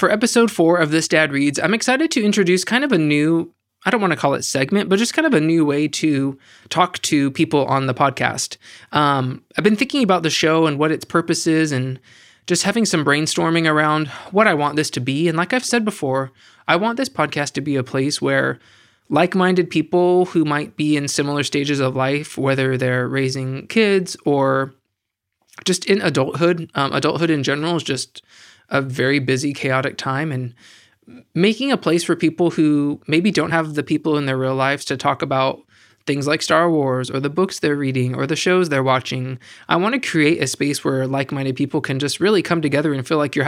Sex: male